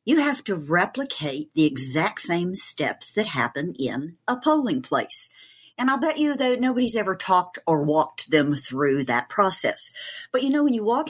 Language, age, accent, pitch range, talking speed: English, 50-69, American, 155-210 Hz, 185 wpm